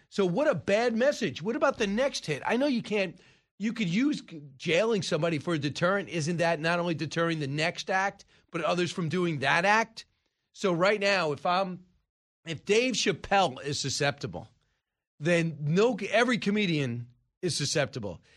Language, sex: English, male